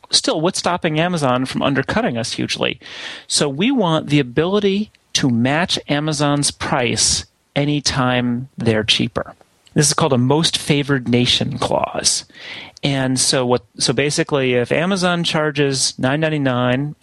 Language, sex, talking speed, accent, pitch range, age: English, male, 130 wpm, American, 125-160 Hz, 30-49